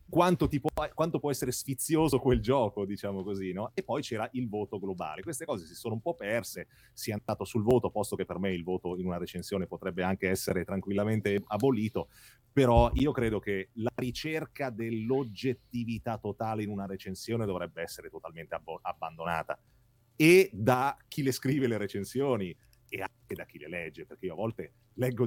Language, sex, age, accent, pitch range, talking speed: Italian, male, 30-49, native, 105-145 Hz, 180 wpm